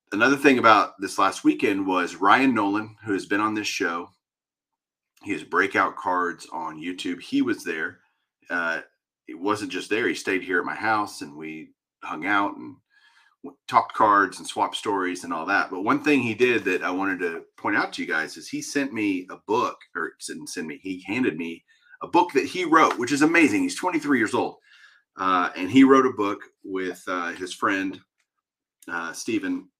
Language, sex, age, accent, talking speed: English, male, 30-49, American, 205 wpm